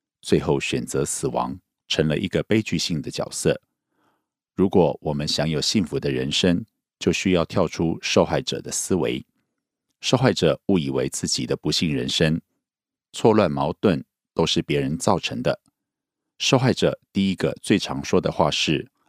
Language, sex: Korean, male